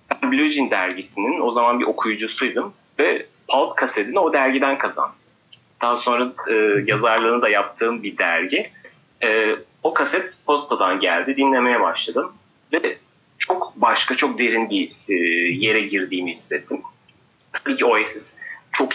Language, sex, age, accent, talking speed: Turkish, male, 30-49, native, 135 wpm